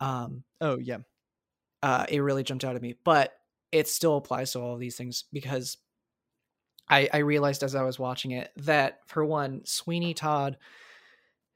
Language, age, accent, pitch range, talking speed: English, 20-39, American, 130-155 Hz, 170 wpm